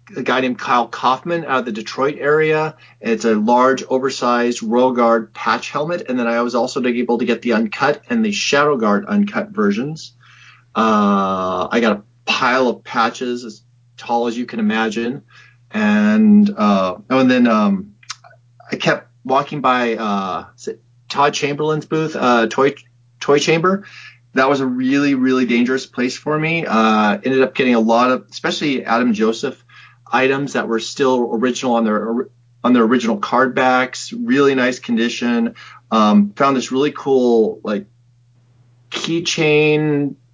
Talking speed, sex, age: 160 wpm, male, 30-49